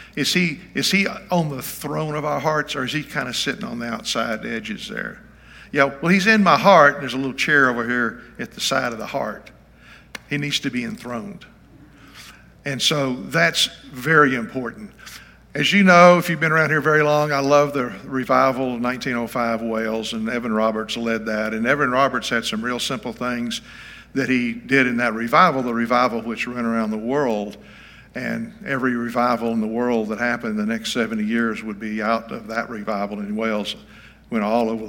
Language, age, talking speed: English, 50-69, 200 wpm